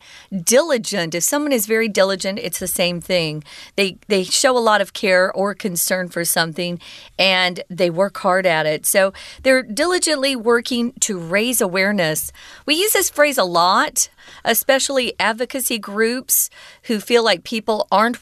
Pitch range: 180-240 Hz